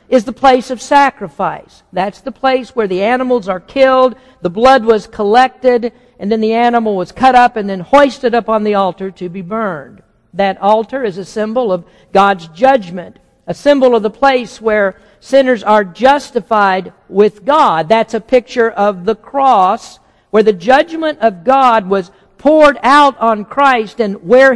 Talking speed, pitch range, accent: 175 wpm, 195-255 Hz, American